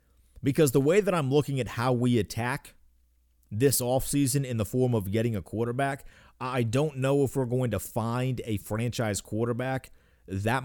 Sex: male